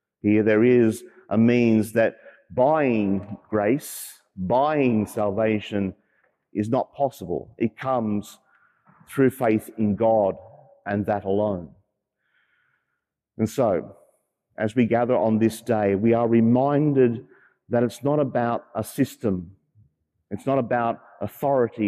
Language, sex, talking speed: English, male, 120 wpm